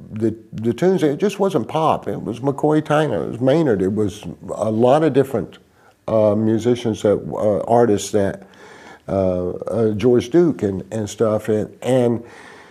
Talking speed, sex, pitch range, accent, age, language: 165 wpm, male, 100-120 Hz, American, 50-69, English